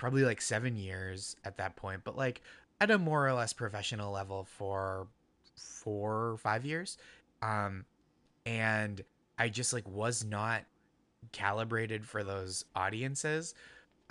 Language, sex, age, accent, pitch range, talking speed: English, male, 20-39, American, 100-125 Hz, 135 wpm